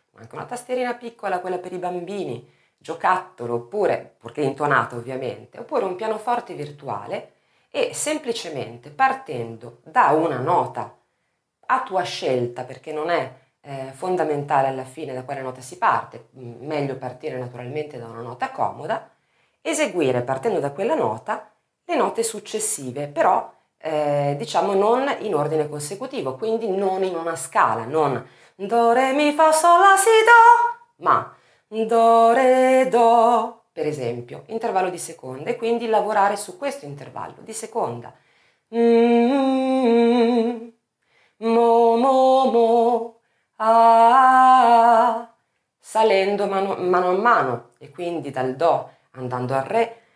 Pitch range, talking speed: 145-240 Hz, 130 wpm